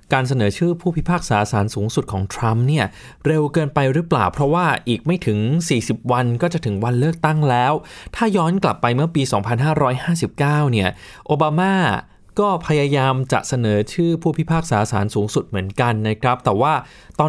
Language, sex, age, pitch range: Thai, male, 20-39, 115-155 Hz